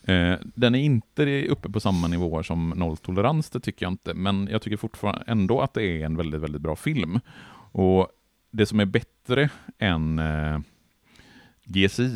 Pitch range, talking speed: 80-105 Hz, 165 wpm